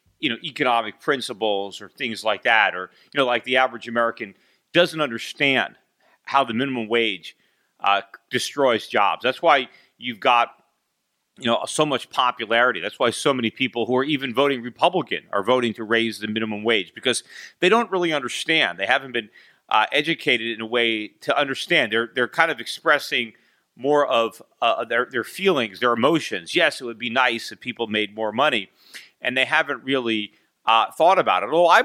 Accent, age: American, 40-59